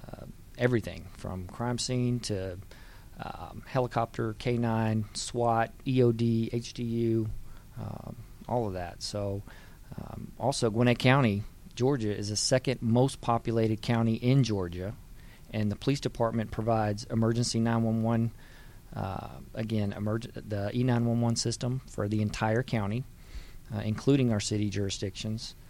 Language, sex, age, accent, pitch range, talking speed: English, male, 40-59, American, 100-120 Hz, 115 wpm